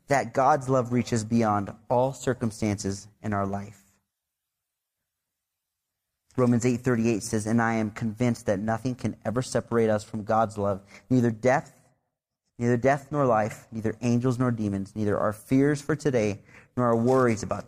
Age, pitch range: 30-49, 100-125 Hz